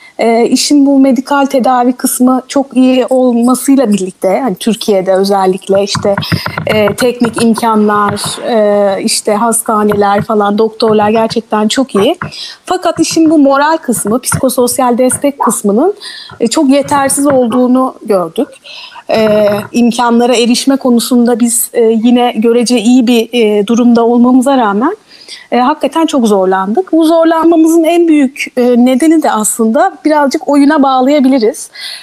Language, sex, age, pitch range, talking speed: Turkish, female, 30-49, 215-275 Hz, 120 wpm